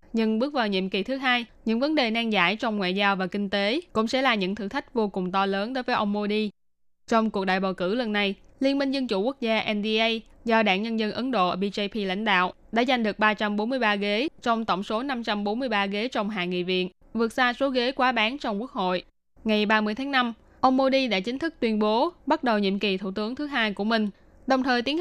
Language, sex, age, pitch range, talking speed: Vietnamese, female, 10-29, 200-240 Hz, 245 wpm